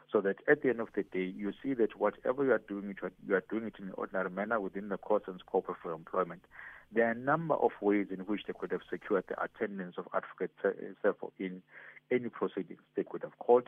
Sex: male